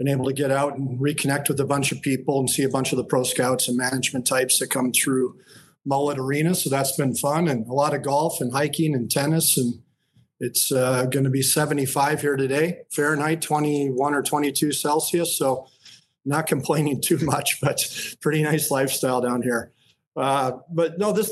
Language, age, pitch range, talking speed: English, 40-59, 130-145 Hz, 195 wpm